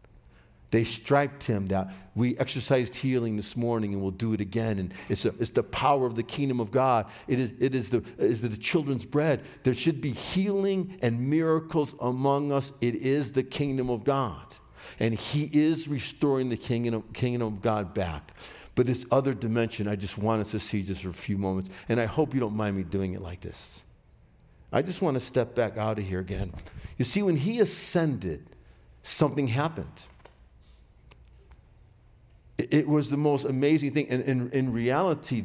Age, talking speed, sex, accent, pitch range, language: 50-69, 180 wpm, male, American, 105-140 Hz, English